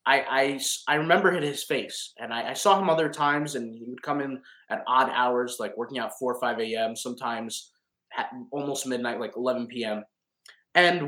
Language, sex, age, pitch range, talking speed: English, male, 20-39, 125-165 Hz, 195 wpm